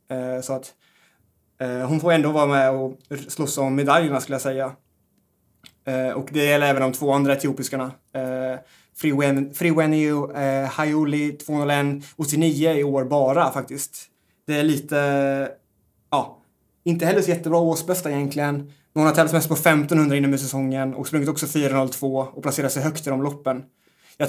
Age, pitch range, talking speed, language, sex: 20-39, 135-150 Hz, 180 wpm, English, male